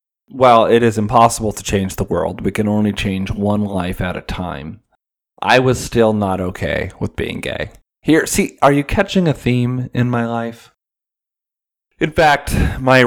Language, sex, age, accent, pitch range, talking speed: English, male, 30-49, American, 100-125 Hz, 175 wpm